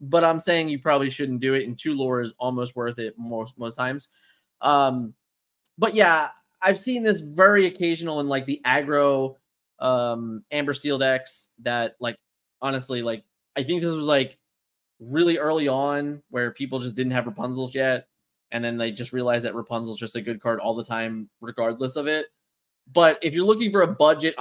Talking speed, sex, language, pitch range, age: 190 wpm, male, English, 125-155 Hz, 20-39